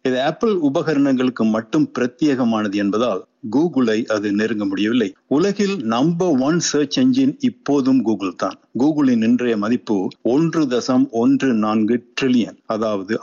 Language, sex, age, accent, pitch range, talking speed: Tamil, male, 50-69, native, 110-140 Hz, 110 wpm